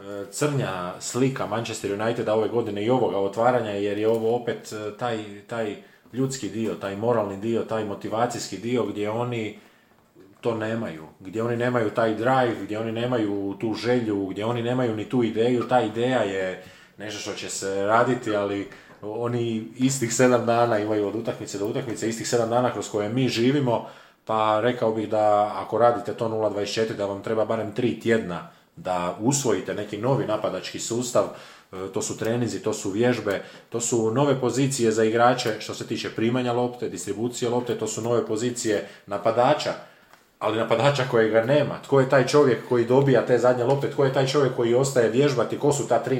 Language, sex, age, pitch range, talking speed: Croatian, male, 20-39, 105-120 Hz, 180 wpm